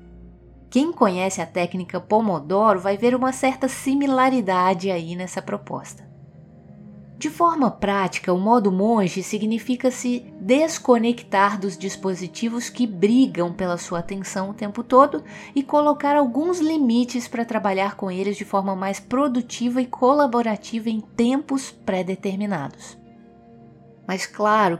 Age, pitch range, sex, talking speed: 20-39, 185-250 Hz, female, 125 wpm